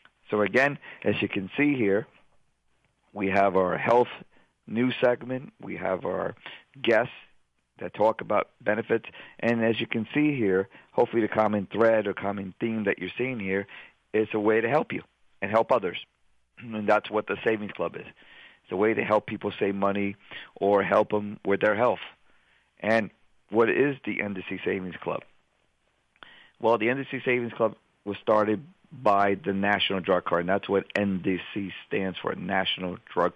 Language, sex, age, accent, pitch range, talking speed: English, male, 50-69, American, 95-110 Hz, 170 wpm